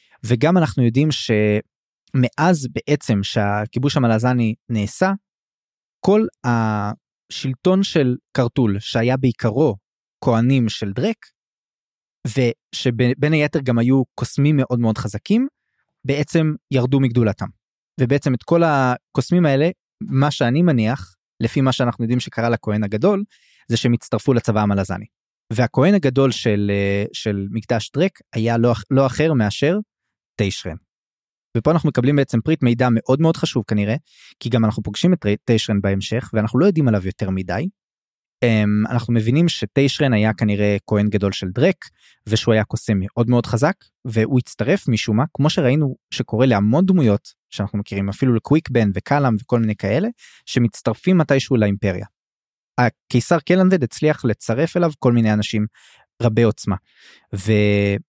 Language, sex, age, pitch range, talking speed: Hebrew, male, 20-39, 110-145 Hz, 130 wpm